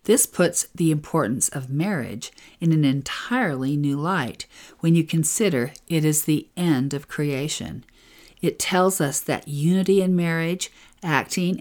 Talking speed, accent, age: 145 wpm, American, 50-69